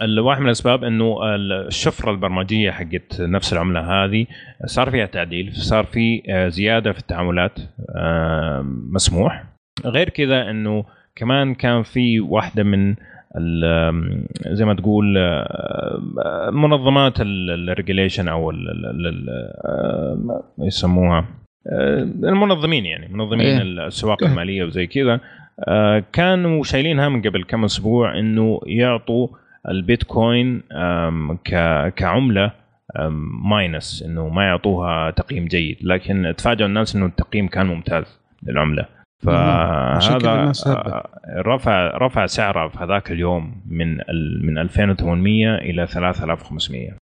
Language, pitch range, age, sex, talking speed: Arabic, 90-115 Hz, 30-49, male, 100 wpm